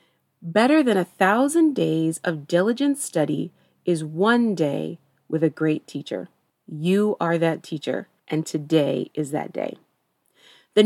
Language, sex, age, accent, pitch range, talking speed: English, female, 30-49, American, 165-265 Hz, 140 wpm